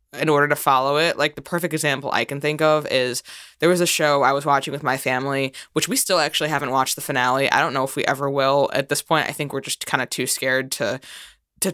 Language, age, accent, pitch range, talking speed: English, 20-39, American, 140-180 Hz, 265 wpm